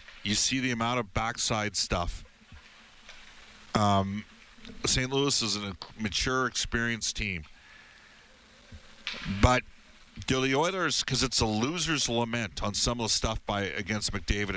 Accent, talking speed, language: American, 135 wpm, English